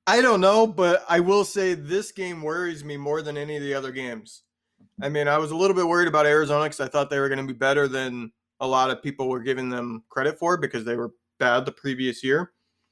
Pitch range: 125-155 Hz